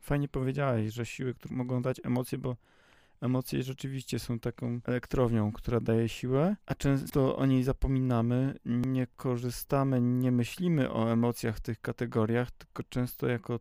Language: Polish